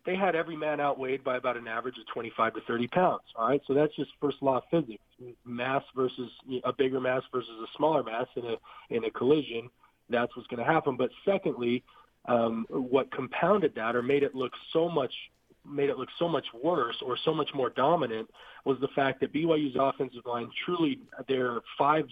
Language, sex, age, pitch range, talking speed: English, male, 40-59, 125-155 Hz, 205 wpm